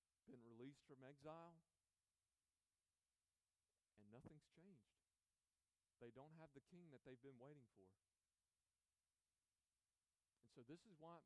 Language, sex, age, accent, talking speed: English, male, 40-59, American, 125 wpm